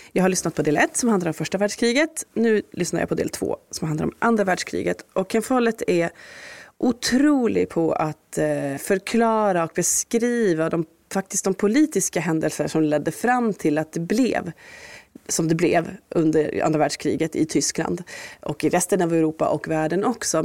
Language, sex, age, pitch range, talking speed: Swedish, female, 30-49, 160-210 Hz, 175 wpm